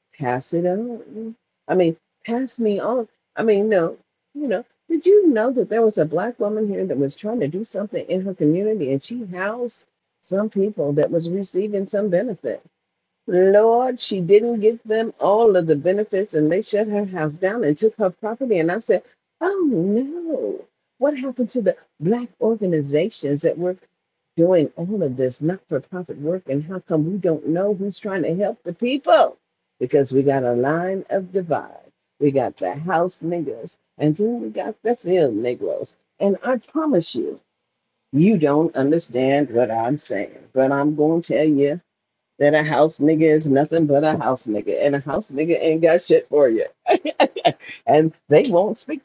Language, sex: English, female